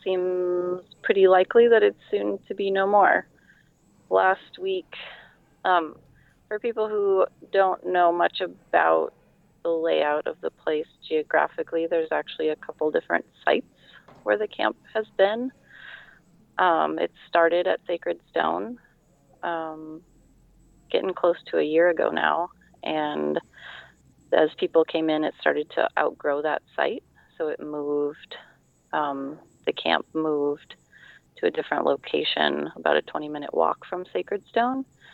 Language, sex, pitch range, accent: English, female, 150-210 Hz, American